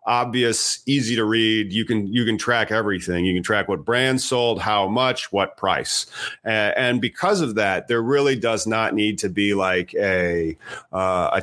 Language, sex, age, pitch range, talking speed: English, male, 30-49, 100-125 Hz, 190 wpm